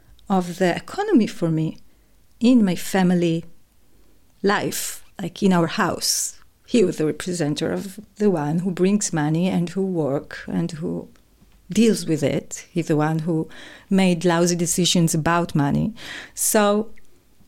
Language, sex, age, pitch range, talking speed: English, female, 40-59, 165-215 Hz, 140 wpm